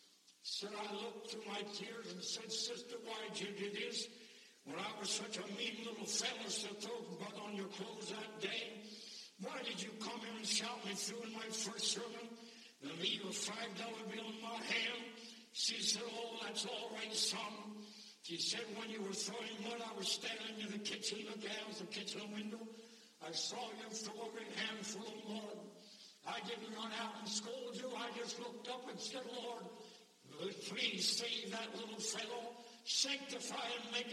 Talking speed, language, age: 190 wpm, English, 60-79